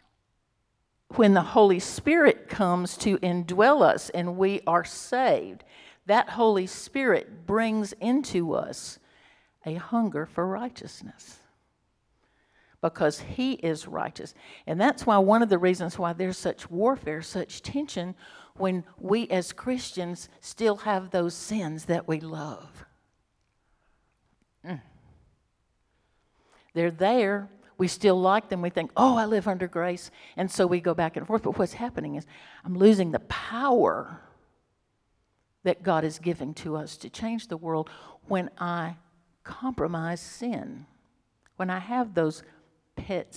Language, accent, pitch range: English, American, 170-220 Hz